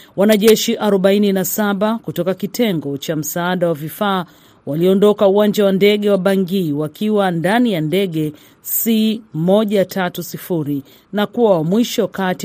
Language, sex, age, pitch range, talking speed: Swahili, female, 40-59, 170-215 Hz, 110 wpm